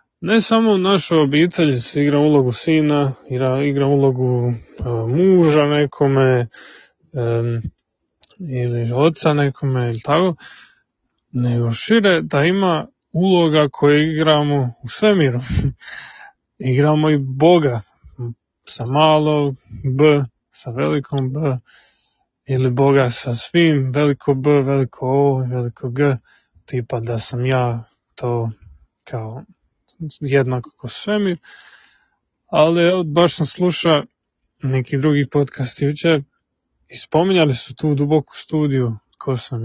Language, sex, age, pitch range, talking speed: Croatian, male, 20-39, 130-165 Hz, 105 wpm